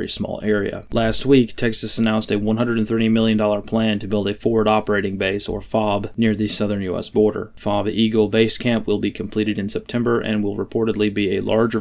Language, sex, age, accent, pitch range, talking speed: English, male, 30-49, American, 105-110 Hz, 195 wpm